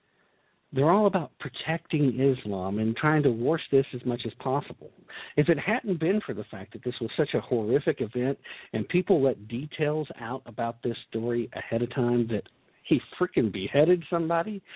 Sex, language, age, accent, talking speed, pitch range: male, English, 50-69, American, 180 wpm, 125-180 Hz